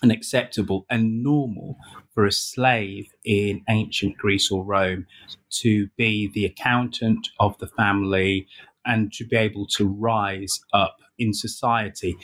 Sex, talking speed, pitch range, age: male, 130 wpm, 100-110 Hz, 30-49